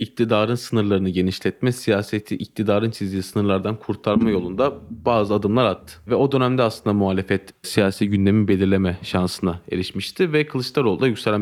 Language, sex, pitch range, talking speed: Turkish, male, 105-140 Hz, 135 wpm